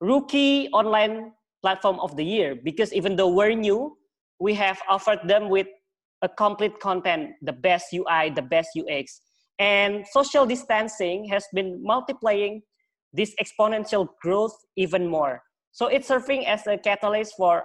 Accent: Indonesian